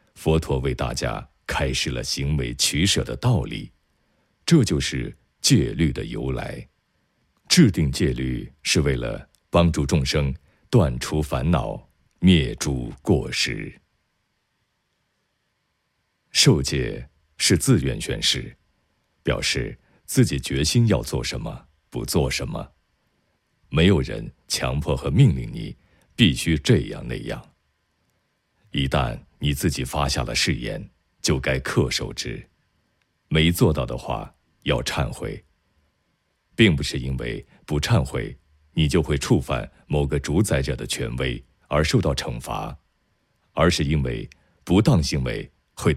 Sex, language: male, Chinese